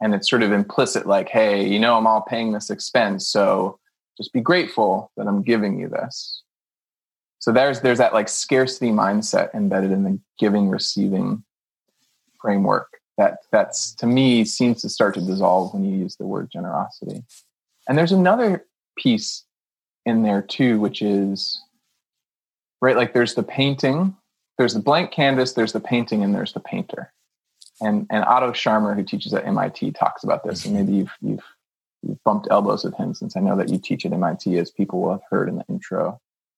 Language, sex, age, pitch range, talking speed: English, male, 20-39, 105-155 Hz, 180 wpm